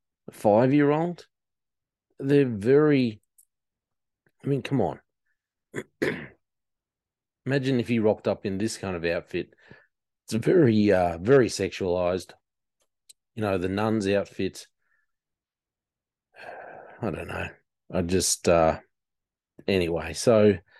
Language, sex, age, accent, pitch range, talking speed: English, male, 40-59, Australian, 95-120 Hz, 110 wpm